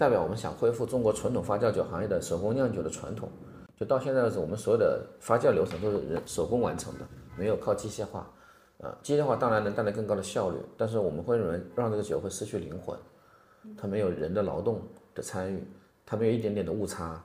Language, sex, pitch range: Chinese, male, 90-120 Hz